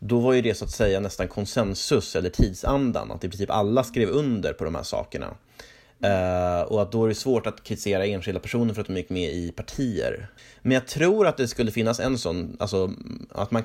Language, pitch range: Swedish, 95-120 Hz